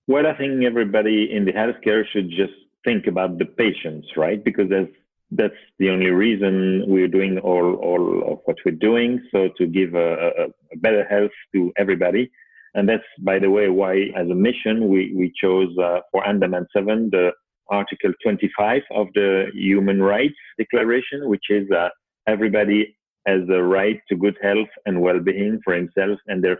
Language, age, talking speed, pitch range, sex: English, 40-59, 175 wpm, 95-115 Hz, male